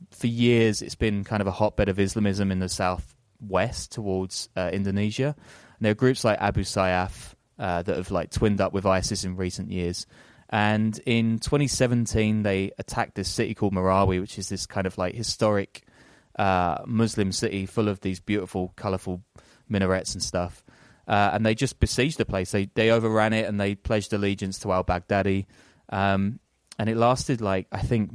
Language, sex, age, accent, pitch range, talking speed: English, male, 20-39, British, 95-110 Hz, 185 wpm